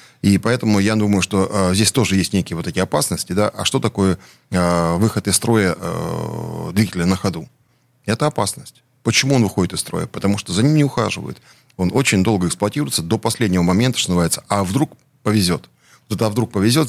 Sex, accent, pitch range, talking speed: male, native, 90-115 Hz, 180 wpm